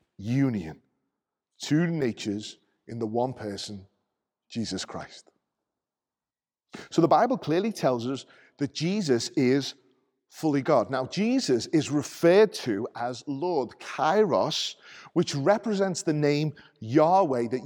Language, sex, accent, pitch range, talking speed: English, male, British, 125-170 Hz, 115 wpm